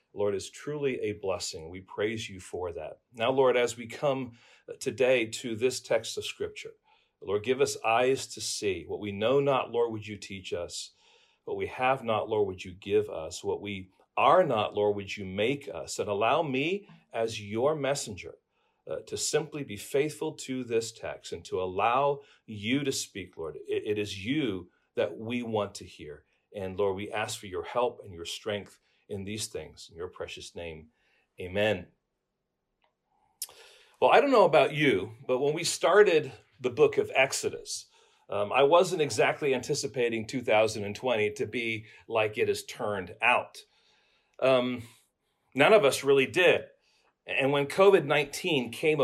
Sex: male